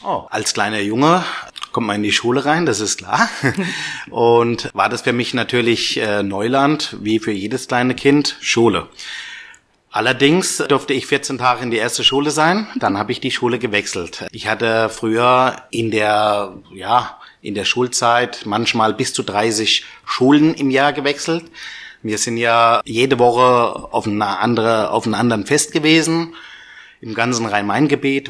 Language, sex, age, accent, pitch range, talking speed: German, male, 30-49, German, 115-145 Hz, 150 wpm